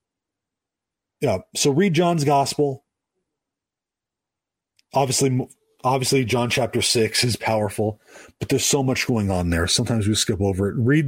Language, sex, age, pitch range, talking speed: English, male, 30-49, 110-135 Hz, 135 wpm